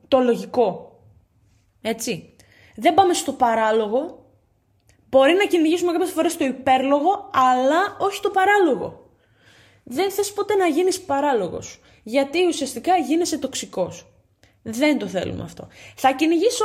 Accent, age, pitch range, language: native, 20-39, 240-380 Hz, Greek